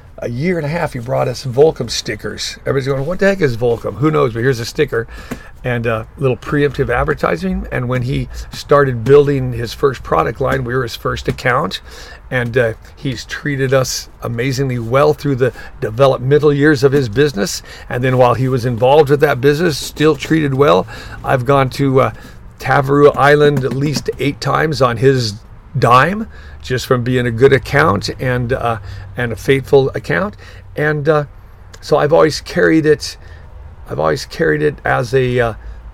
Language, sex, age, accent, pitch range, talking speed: English, male, 50-69, American, 120-145 Hz, 180 wpm